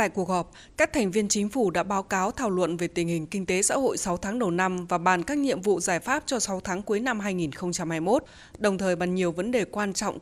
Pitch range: 185-235 Hz